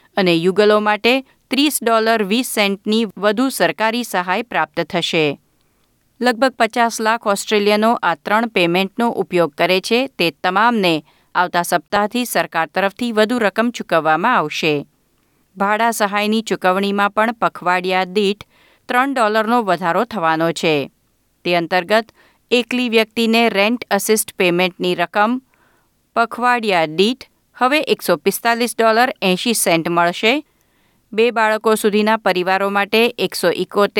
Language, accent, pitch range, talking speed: Gujarati, native, 180-230 Hz, 115 wpm